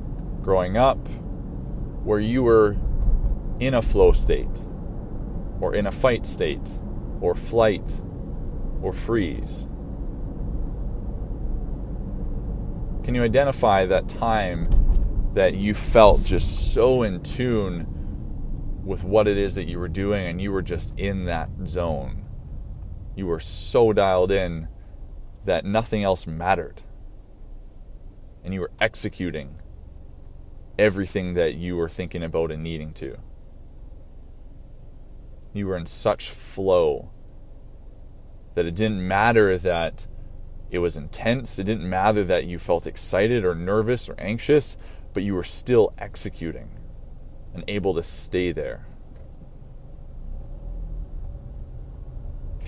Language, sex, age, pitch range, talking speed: English, male, 20-39, 80-105 Hz, 115 wpm